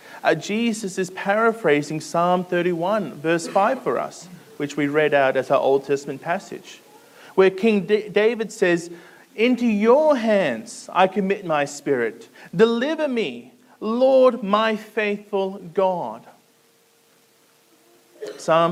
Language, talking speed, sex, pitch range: English, 120 wpm, male, 180-235 Hz